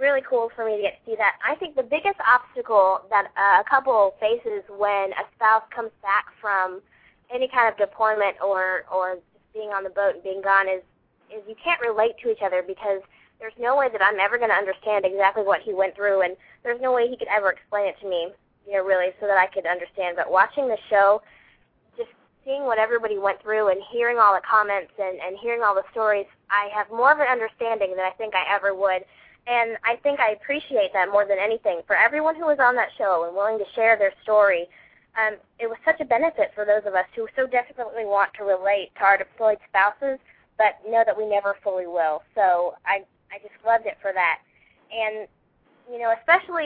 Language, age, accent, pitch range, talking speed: English, 20-39, American, 195-235 Hz, 225 wpm